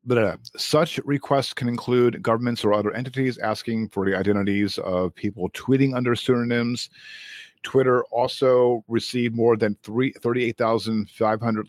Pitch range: 105-135 Hz